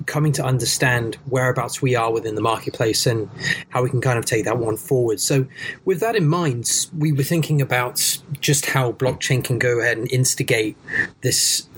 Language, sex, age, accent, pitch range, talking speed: English, male, 30-49, British, 120-145 Hz, 190 wpm